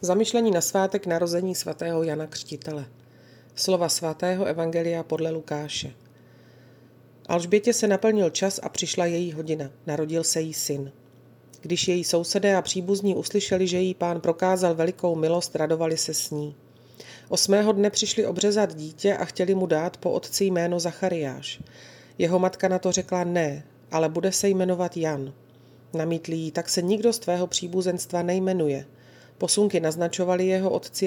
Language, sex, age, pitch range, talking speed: Slovak, female, 40-59, 150-185 Hz, 150 wpm